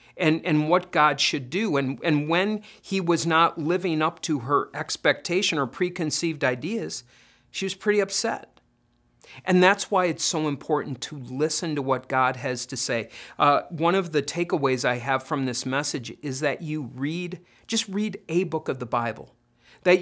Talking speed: 180 wpm